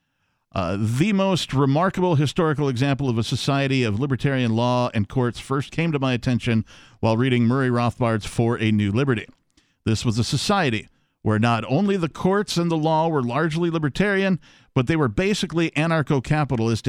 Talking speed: 165 wpm